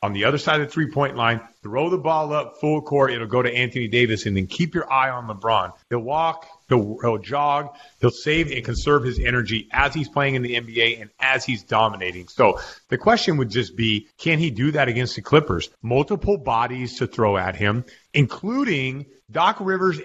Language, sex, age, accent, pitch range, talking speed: English, male, 40-59, American, 115-155 Hz, 205 wpm